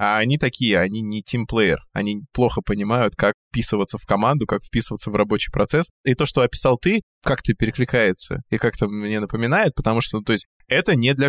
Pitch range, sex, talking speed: 110-140 Hz, male, 195 wpm